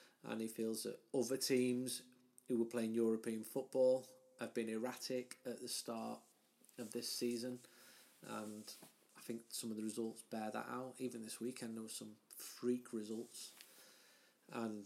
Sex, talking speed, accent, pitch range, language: male, 160 wpm, British, 110-125 Hz, English